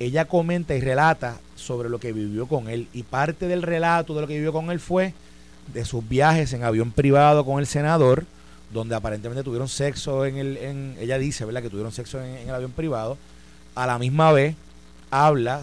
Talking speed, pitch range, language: 205 wpm, 120-155 Hz, Spanish